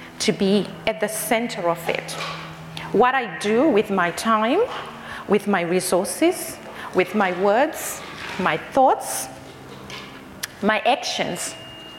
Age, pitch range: 40-59, 190-235 Hz